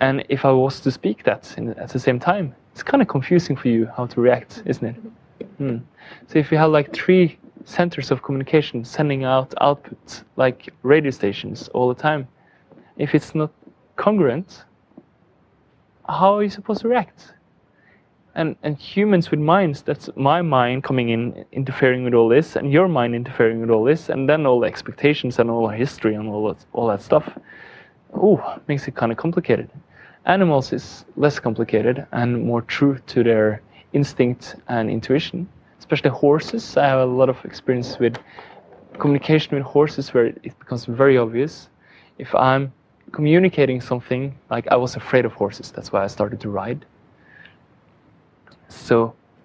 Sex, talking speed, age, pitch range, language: male, 170 wpm, 20-39, 125-155 Hz, English